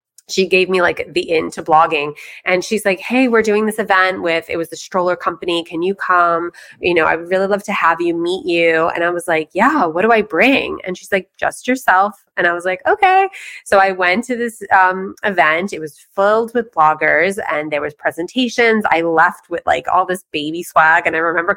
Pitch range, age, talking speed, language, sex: 170-225 Hz, 20-39, 230 wpm, English, female